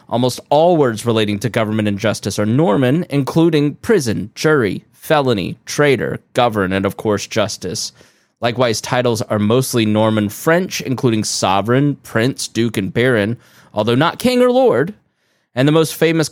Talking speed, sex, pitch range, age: 150 wpm, male, 105-130 Hz, 20-39